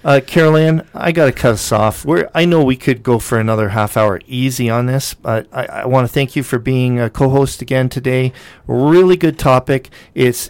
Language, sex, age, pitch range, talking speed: English, male, 50-69, 110-130 Hz, 215 wpm